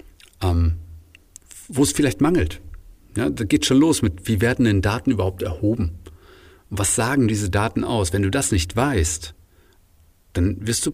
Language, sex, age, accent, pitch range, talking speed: German, male, 50-69, German, 85-110 Hz, 165 wpm